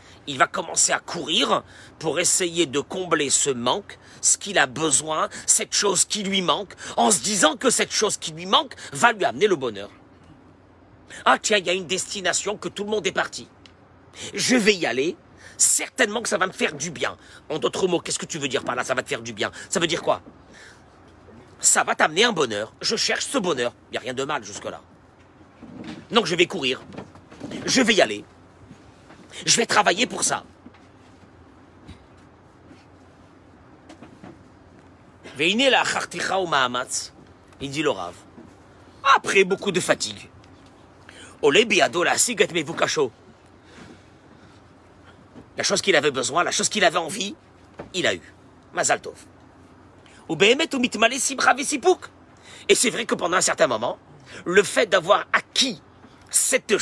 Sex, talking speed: male, 150 wpm